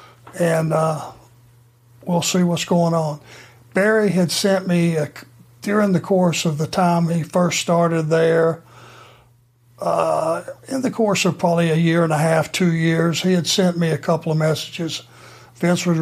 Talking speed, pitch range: 165 wpm, 155-175 Hz